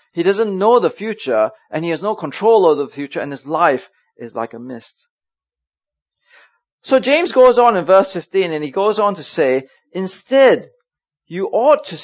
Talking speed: 185 wpm